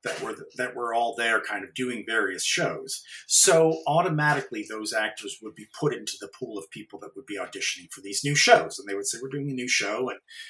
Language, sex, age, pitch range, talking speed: English, male, 40-59, 120-180 Hz, 235 wpm